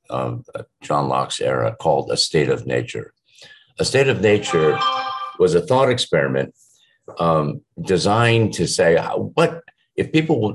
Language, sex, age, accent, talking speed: English, male, 50-69, American, 135 wpm